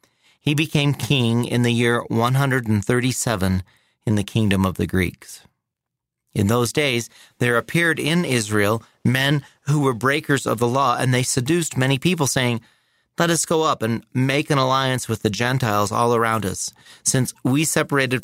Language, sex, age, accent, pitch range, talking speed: English, male, 30-49, American, 105-130 Hz, 165 wpm